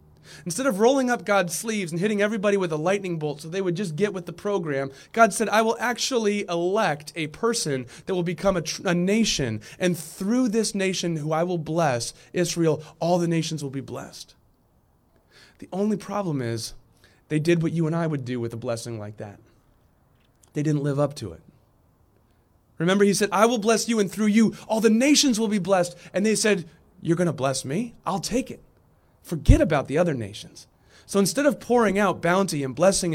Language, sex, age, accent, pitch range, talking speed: English, male, 30-49, American, 155-205 Hz, 205 wpm